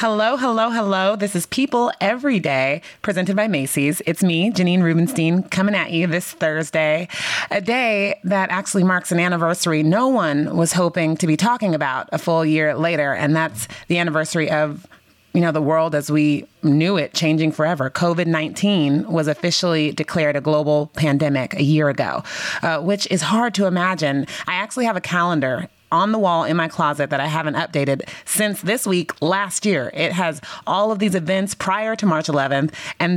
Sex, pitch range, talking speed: female, 155-195 Hz, 185 wpm